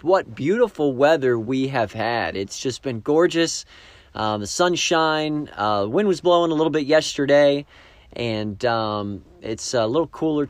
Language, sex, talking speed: English, male, 155 wpm